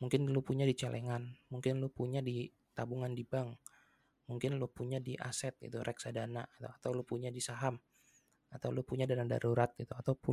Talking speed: 185 wpm